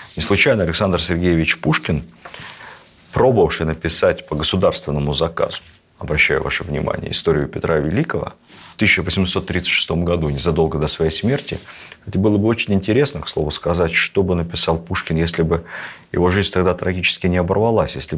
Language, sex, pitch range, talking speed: Russian, male, 85-105 Hz, 145 wpm